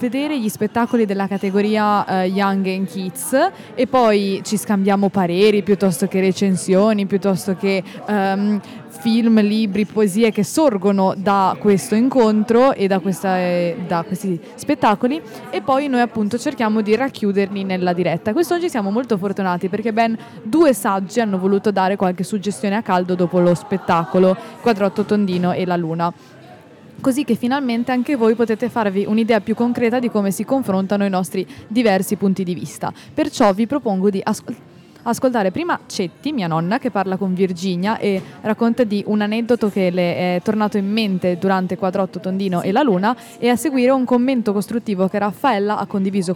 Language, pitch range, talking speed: Italian, 190-230 Hz, 160 wpm